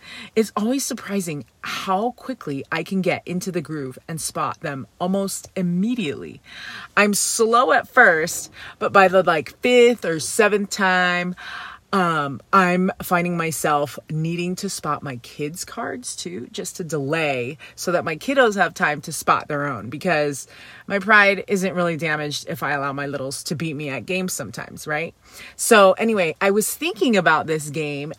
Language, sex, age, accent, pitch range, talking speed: English, female, 30-49, American, 155-205 Hz, 165 wpm